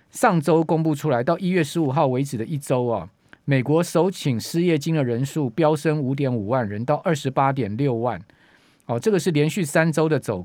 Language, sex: Chinese, male